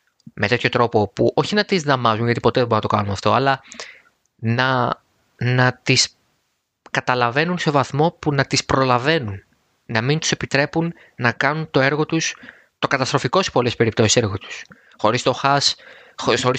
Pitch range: 115-140 Hz